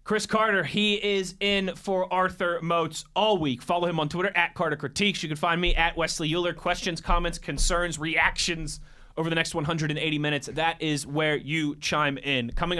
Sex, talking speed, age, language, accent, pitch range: male, 190 wpm, 20-39, English, American, 145-175 Hz